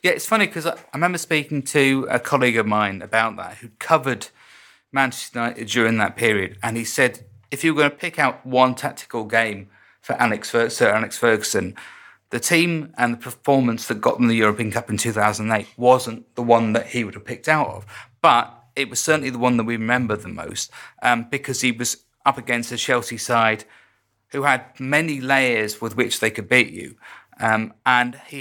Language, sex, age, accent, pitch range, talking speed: English, male, 30-49, British, 110-135 Hz, 200 wpm